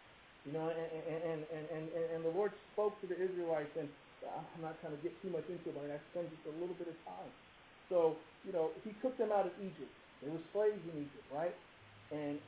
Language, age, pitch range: English, 40-59, 145-175 Hz